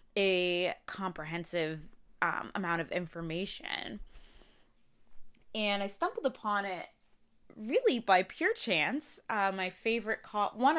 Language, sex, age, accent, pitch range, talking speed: English, female, 20-39, American, 175-220 Hz, 105 wpm